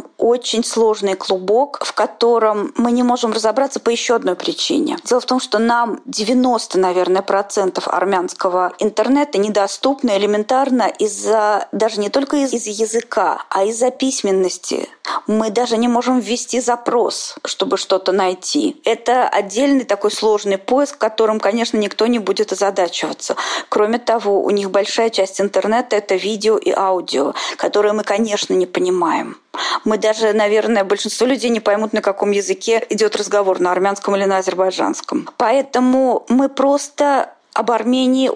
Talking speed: 140 wpm